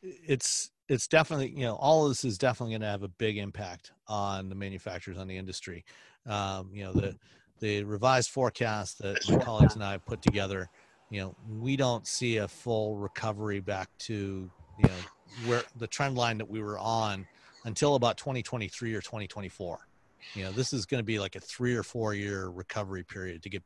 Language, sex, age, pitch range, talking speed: English, male, 40-59, 100-125 Hz, 200 wpm